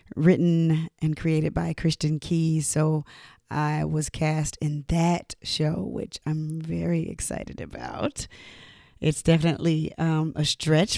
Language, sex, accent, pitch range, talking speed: English, female, American, 155-170 Hz, 125 wpm